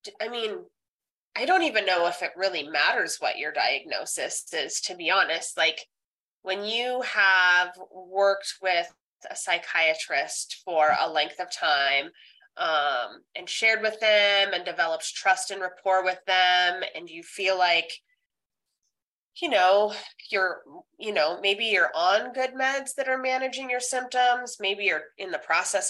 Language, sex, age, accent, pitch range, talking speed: English, female, 30-49, American, 185-250 Hz, 155 wpm